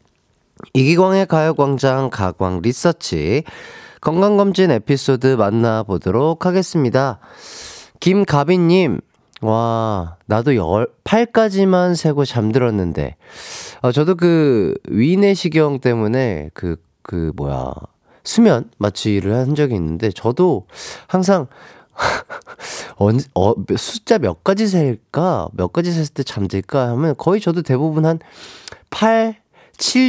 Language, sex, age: Korean, male, 40-59